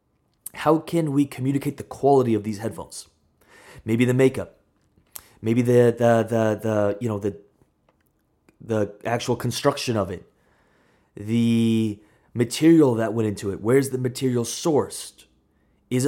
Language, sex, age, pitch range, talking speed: English, male, 30-49, 105-135 Hz, 135 wpm